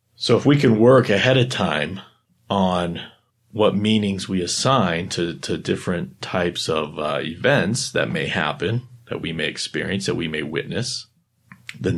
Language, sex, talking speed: English, male, 160 wpm